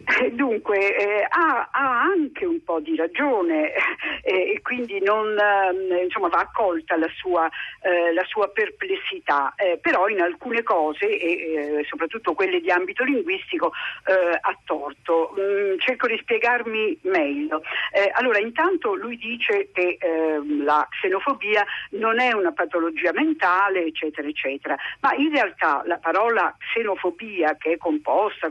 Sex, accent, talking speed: female, native, 140 wpm